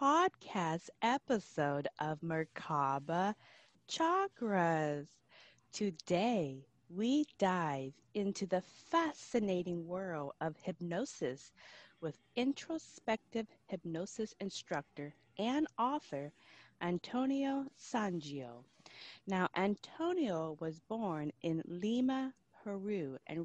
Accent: American